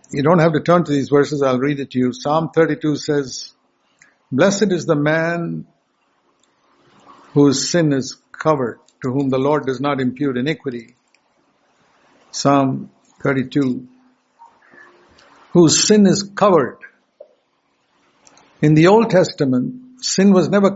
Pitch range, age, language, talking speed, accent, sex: 135-175 Hz, 60-79, English, 130 wpm, Indian, male